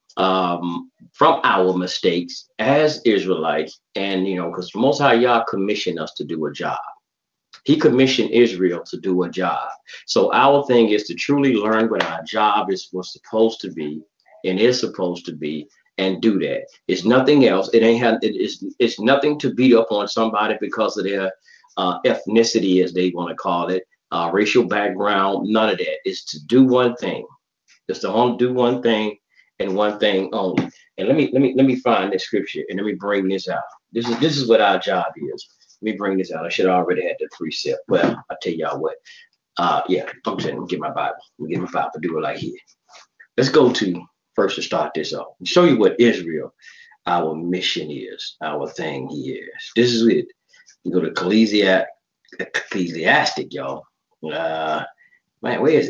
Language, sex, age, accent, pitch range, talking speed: English, male, 40-59, American, 95-135 Hz, 200 wpm